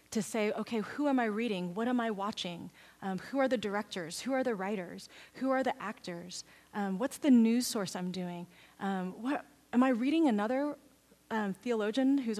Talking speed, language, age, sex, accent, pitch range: 195 wpm, English, 30-49, female, American, 185-230 Hz